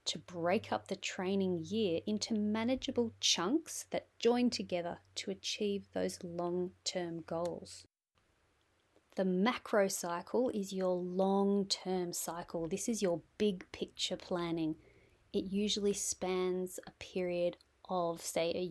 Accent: Australian